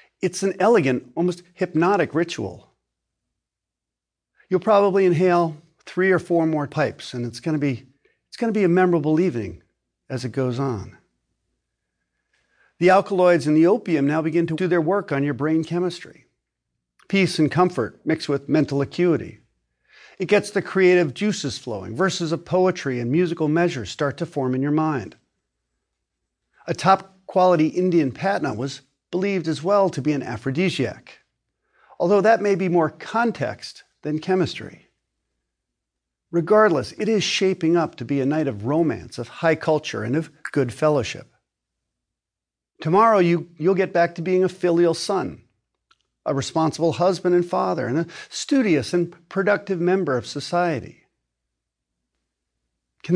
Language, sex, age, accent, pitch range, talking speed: English, male, 50-69, American, 135-185 Hz, 145 wpm